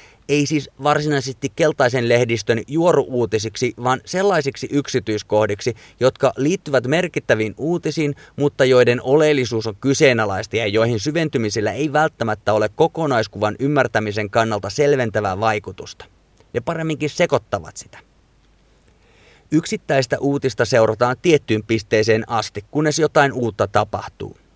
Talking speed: 105 wpm